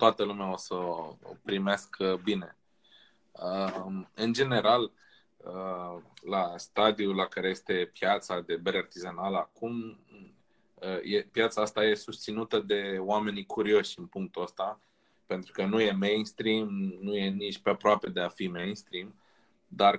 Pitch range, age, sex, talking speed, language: 95-110 Hz, 20-39, male, 145 wpm, Romanian